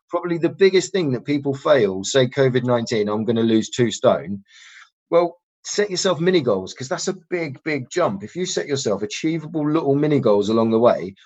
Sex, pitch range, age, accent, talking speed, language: male, 115-145 Hz, 30-49, British, 195 wpm, English